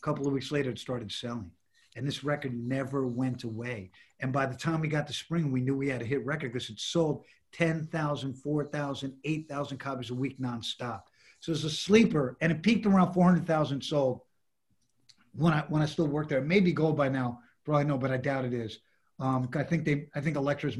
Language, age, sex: English, 50-69, male